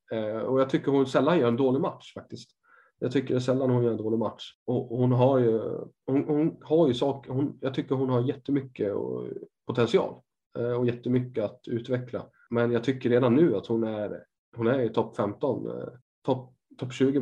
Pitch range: 115-135 Hz